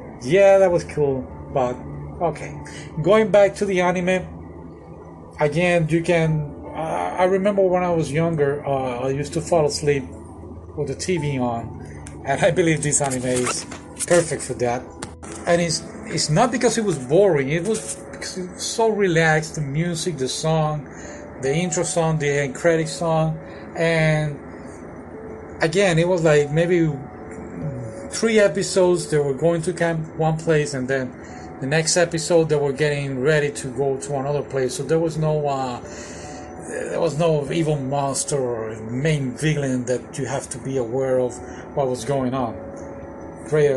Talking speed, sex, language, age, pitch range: 165 wpm, male, English, 40-59, 130-170 Hz